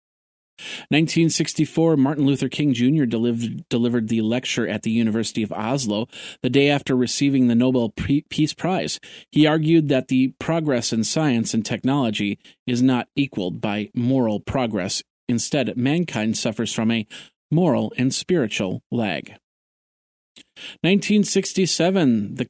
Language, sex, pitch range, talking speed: English, male, 115-150 Hz, 125 wpm